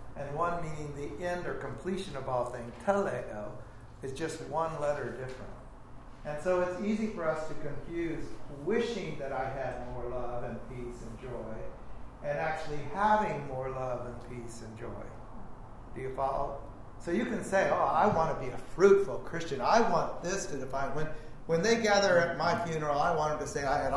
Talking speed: 195 wpm